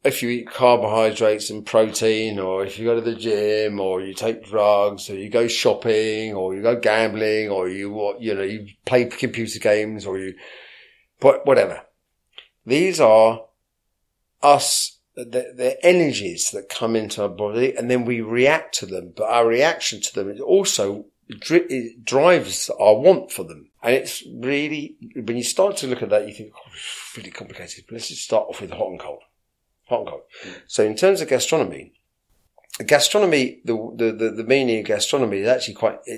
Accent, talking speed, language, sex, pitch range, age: British, 180 wpm, English, male, 105-140 Hz, 40-59